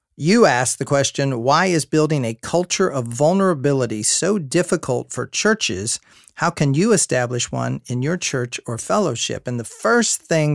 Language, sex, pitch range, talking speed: English, male, 125-170 Hz, 165 wpm